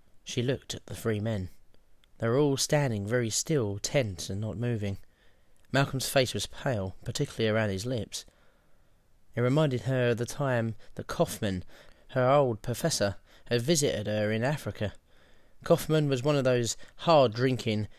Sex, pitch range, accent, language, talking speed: male, 105-145 Hz, British, English, 155 wpm